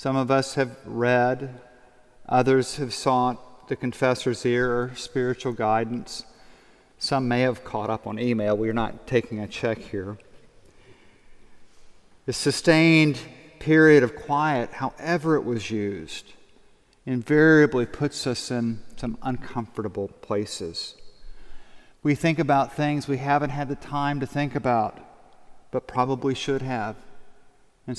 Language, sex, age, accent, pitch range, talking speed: English, male, 40-59, American, 120-145 Hz, 130 wpm